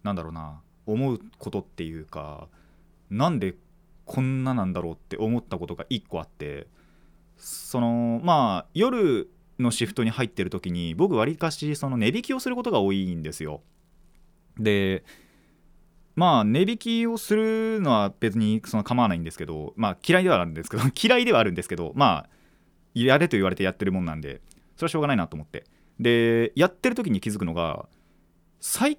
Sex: male